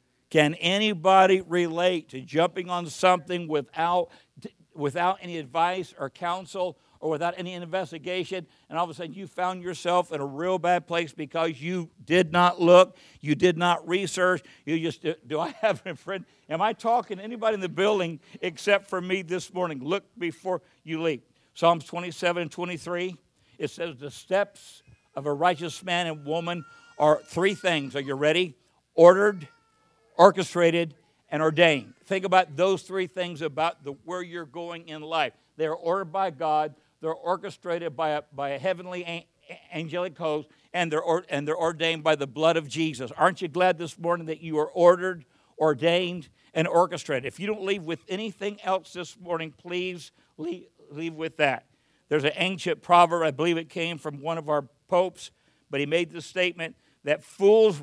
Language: English